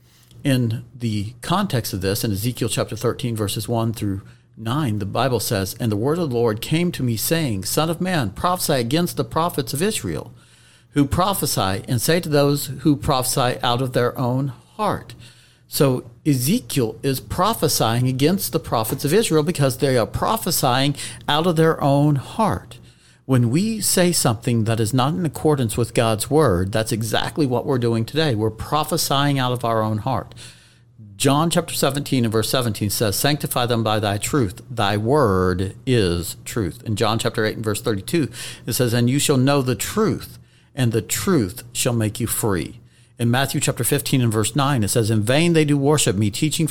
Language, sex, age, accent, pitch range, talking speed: English, male, 50-69, American, 115-145 Hz, 185 wpm